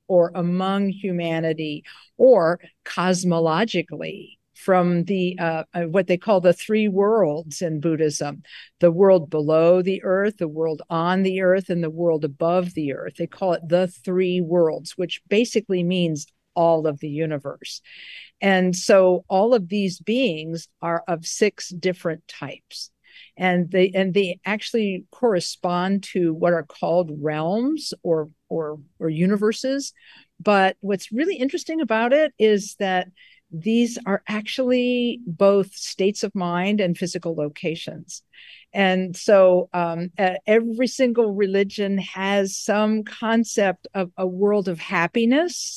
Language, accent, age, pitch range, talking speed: English, American, 50-69, 170-205 Hz, 135 wpm